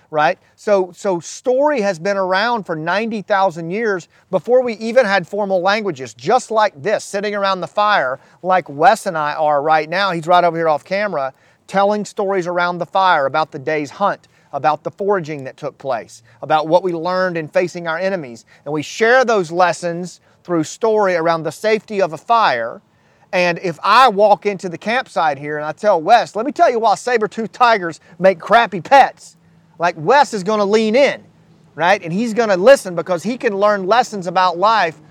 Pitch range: 165-210 Hz